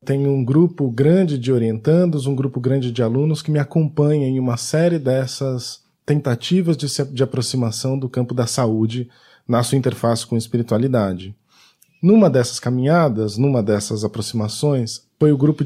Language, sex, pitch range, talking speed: Portuguese, male, 125-175 Hz, 160 wpm